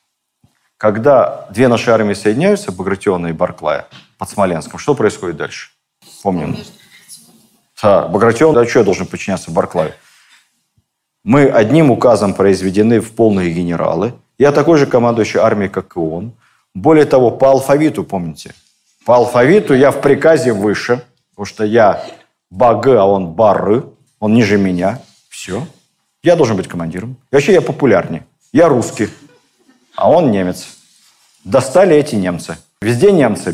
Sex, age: male, 50-69